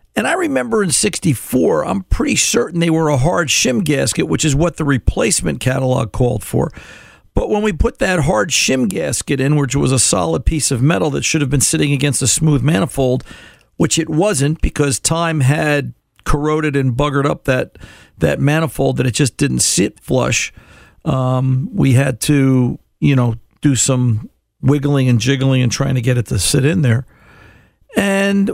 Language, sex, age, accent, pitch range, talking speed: English, male, 50-69, American, 120-155 Hz, 185 wpm